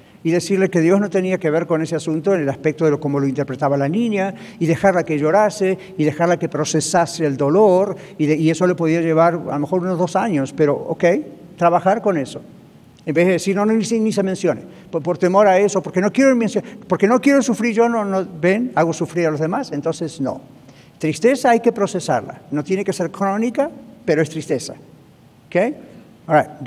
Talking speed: 215 wpm